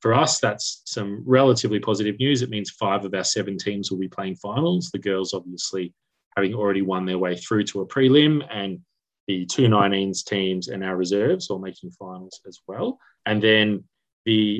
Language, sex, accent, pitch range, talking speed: English, male, Australian, 95-115 Hz, 190 wpm